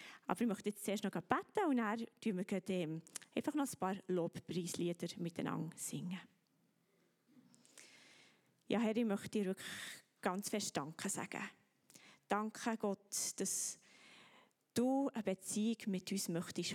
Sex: female